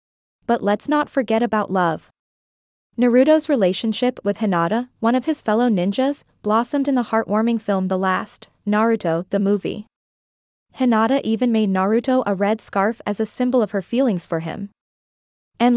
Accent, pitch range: American, 200-250 Hz